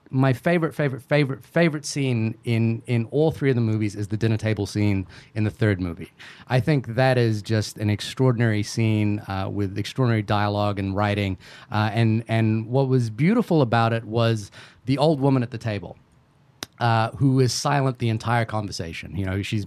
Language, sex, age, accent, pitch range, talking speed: English, male, 30-49, American, 105-130 Hz, 185 wpm